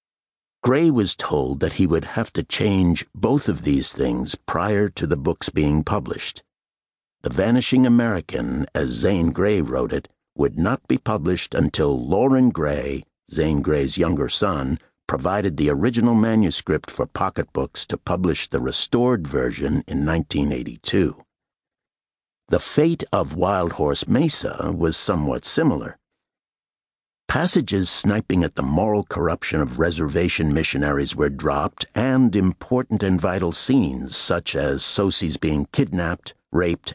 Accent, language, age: American, English, 60-79